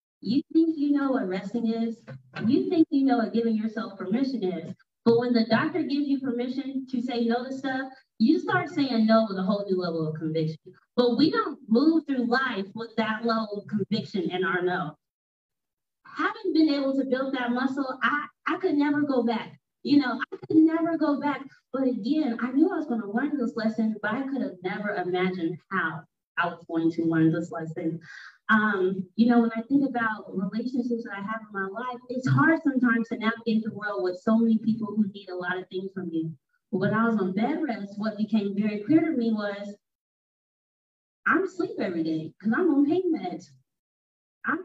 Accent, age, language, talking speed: American, 20-39, English, 205 wpm